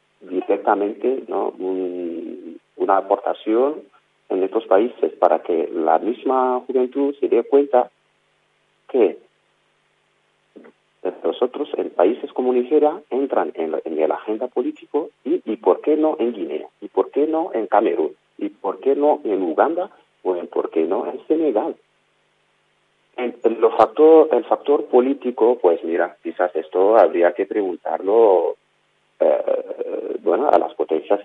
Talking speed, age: 135 wpm, 40-59